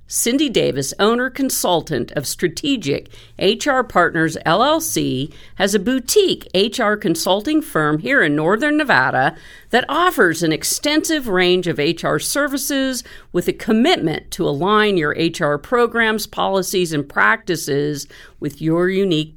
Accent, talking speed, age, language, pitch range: American, 125 wpm, 50-69, English, 160-250 Hz